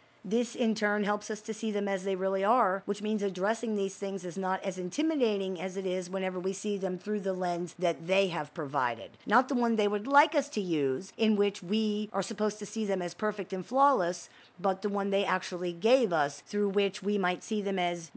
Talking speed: 230 wpm